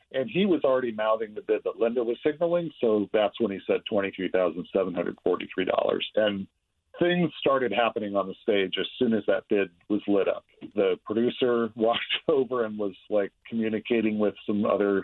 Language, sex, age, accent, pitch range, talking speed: English, male, 50-69, American, 100-135 Hz, 170 wpm